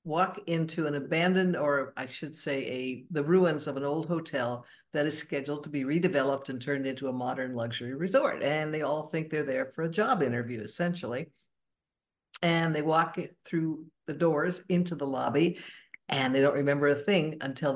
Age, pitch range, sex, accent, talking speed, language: 60-79, 135-170 Hz, female, American, 185 wpm, English